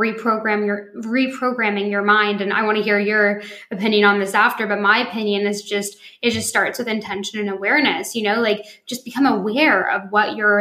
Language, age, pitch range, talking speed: English, 10-29, 200-230 Hz, 205 wpm